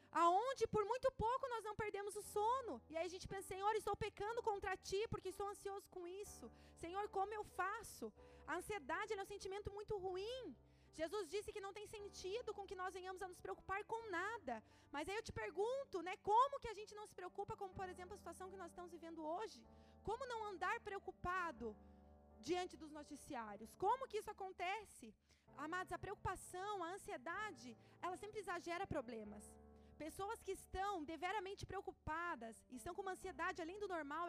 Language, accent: Portuguese, Brazilian